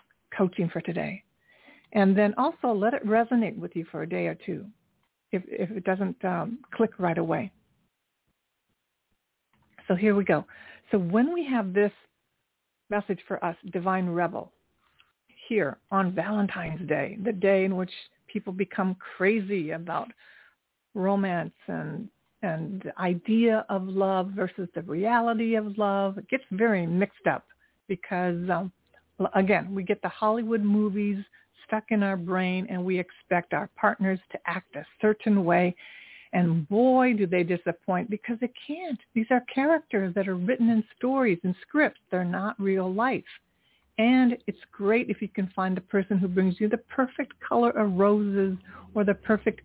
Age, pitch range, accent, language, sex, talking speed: 60-79, 185-220 Hz, American, English, female, 160 wpm